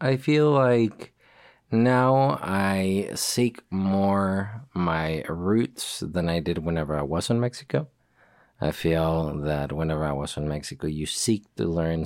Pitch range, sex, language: 80-100 Hz, male, English